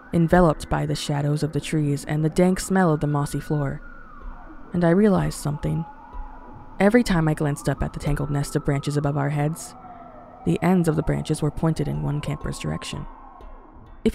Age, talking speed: 20-39, 190 wpm